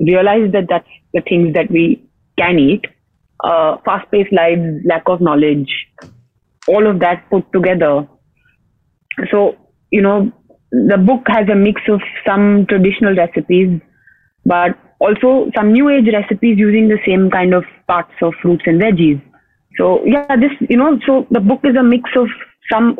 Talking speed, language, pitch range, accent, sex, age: 160 wpm, English, 175-220 Hz, Indian, female, 30-49